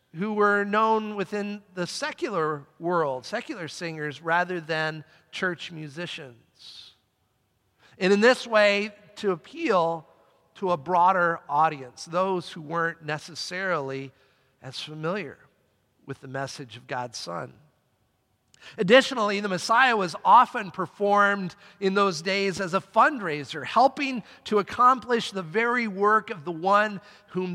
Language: English